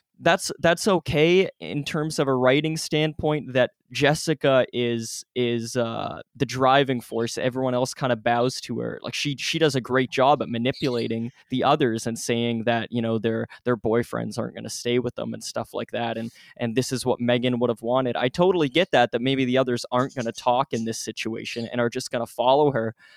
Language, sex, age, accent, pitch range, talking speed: English, male, 20-39, American, 115-130 Hz, 220 wpm